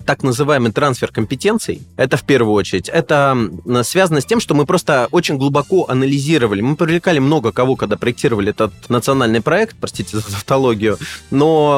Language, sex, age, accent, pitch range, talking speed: Russian, male, 20-39, native, 120-155 Hz, 160 wpm